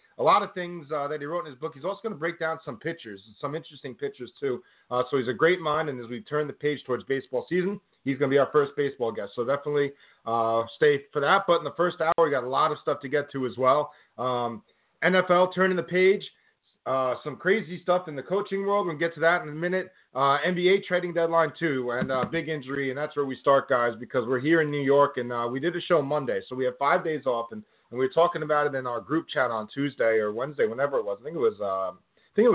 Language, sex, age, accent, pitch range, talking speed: English, male, 30-49, American, 130-175 Hz, 275 wpm